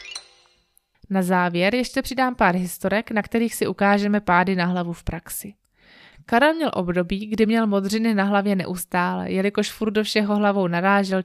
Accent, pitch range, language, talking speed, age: native, 190-230 Hz, Czech, 160 wpm, 20-39